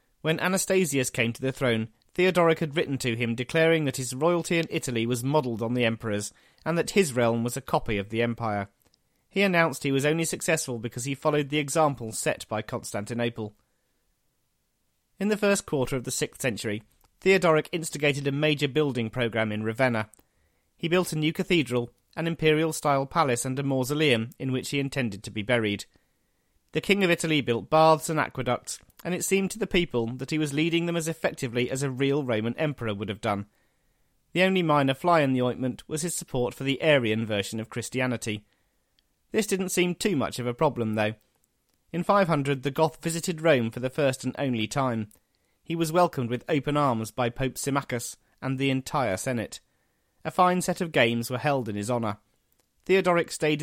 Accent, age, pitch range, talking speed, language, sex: British, 30-49, 115-160 Hz, 190 wpm, English, male